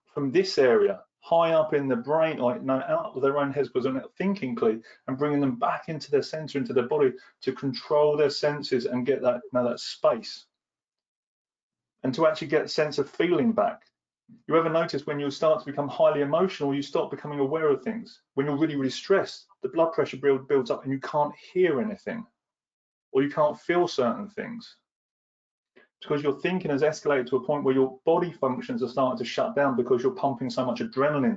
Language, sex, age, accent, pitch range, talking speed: English, male, 30-49, British, 140-195 Hz, 210 wpm